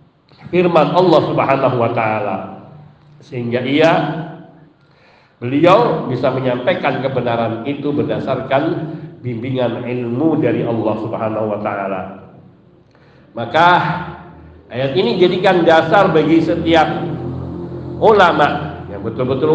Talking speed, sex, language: 90 wpm, male, Indonesian